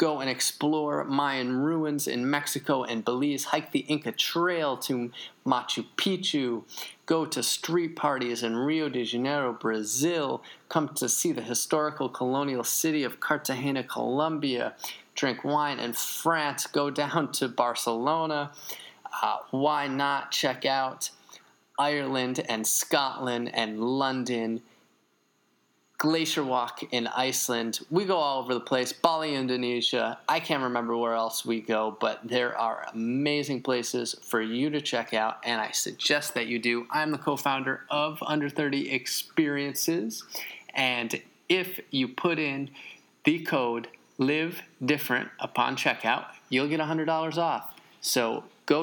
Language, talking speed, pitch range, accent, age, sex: English, 135 wpm, 120-150 Hz, American, 20-39, male